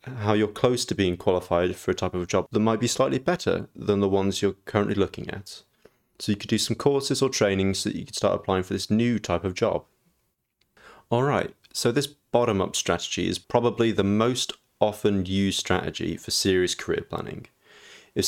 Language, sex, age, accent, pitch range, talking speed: English, male, 30-49, British, 95-120 Hz, 200 wpm